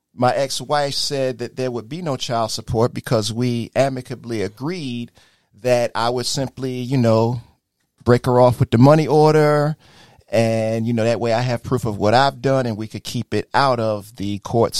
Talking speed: 195 wpm